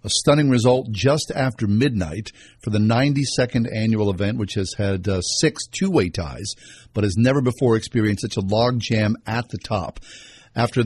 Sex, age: male, 50-69